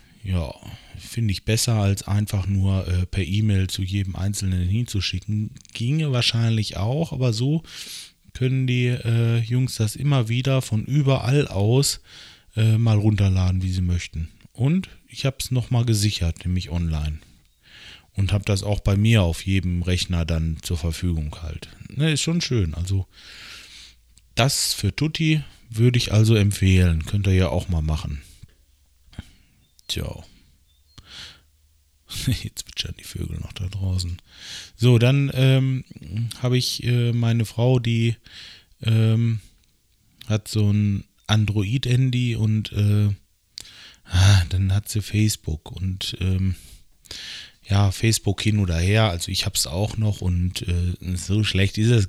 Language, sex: German, male